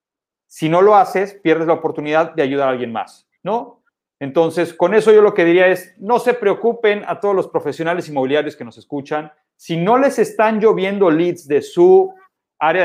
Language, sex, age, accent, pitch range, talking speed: Spanish, male, 40-59, Mexican, 155-205 Hz, 190 wpm